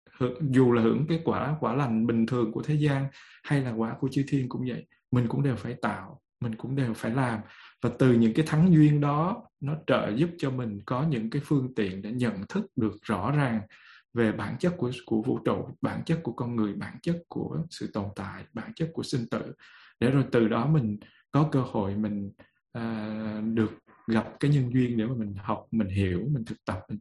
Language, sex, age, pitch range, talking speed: Vietnamese, male, 20-39, 115-145 Hz, 225 wpm